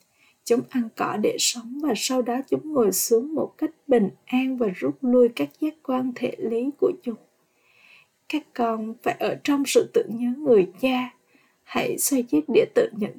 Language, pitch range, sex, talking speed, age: Vietnamese, 225-280 Hz, female, 185 wpm, 20-39